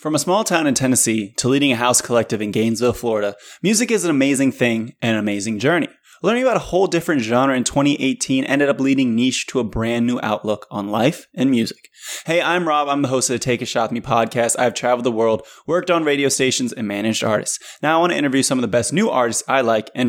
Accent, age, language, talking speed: American, 20-39, English, 245 wpm